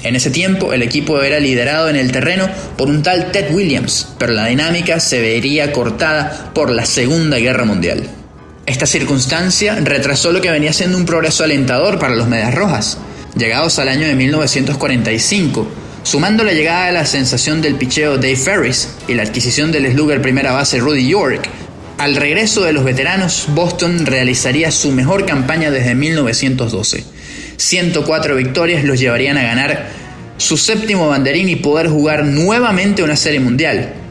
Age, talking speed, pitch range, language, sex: 20-39, 160 wpm, 130-165 Hz, Spanish, male